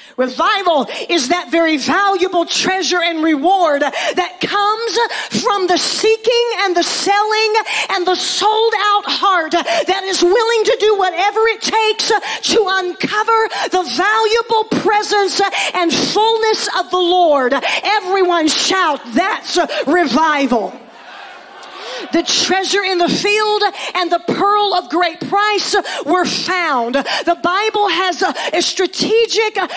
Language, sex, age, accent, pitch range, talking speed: English, female, 40-59, American, 345-415 Hz, 125 wpm